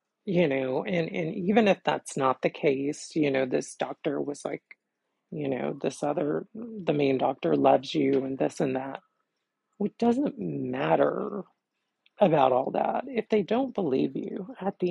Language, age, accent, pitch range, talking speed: English, 40-59, American, 140-180 Hz, 170 wpm